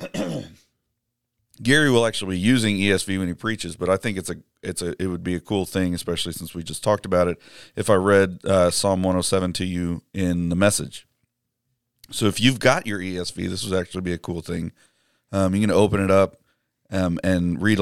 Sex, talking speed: male, 210 wpm